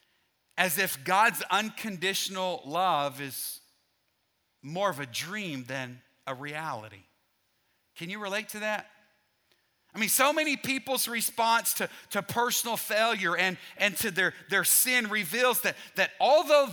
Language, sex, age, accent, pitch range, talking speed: English, male, 40-59, American, 170-220 Hz, 135 wpm